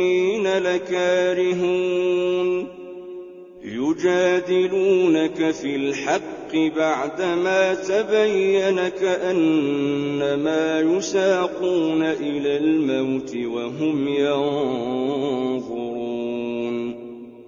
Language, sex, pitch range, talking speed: Arabic, male, 160-195 Hz, 40 wpm